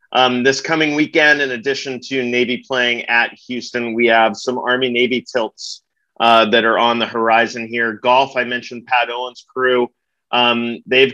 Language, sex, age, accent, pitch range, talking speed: English, male, 30-49, American, 115-130 Hz, 165 wpm